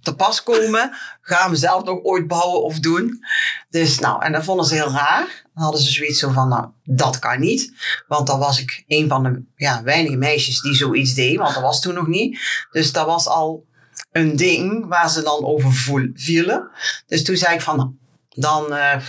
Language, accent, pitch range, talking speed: Dutch, Dutch, 140-175 Hz, 210 wpm